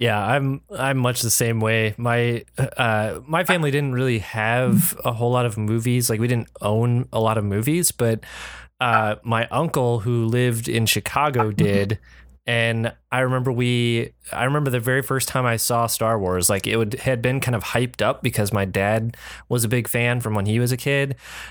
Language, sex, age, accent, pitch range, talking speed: English, male, 20-39, American, 105-120 Hz, 200 wpm